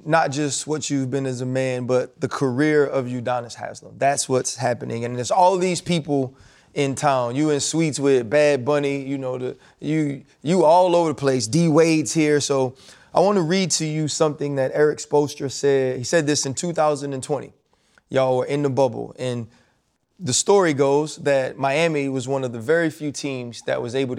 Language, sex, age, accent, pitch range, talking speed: English, male, 30-49, American, 125-150 Hz, 195 wpm